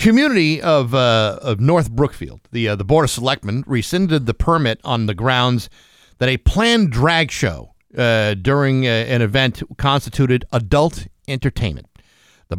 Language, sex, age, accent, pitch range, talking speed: English, male, 50-69, American, 115-150 Hz, 155 wpm